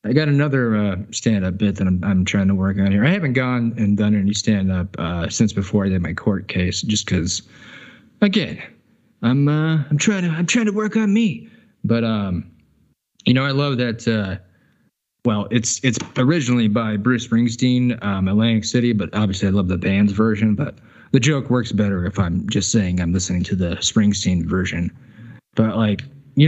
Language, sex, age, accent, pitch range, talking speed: English, male, 20-39, American, 105-130 Hz, 195 wpm